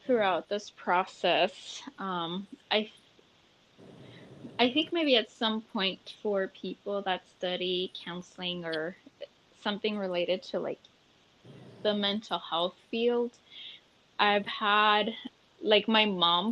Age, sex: 10-29, female